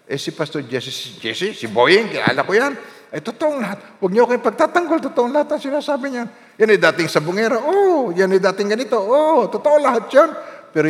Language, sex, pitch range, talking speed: Filipino, male, 130-205 Hz, 215 wpm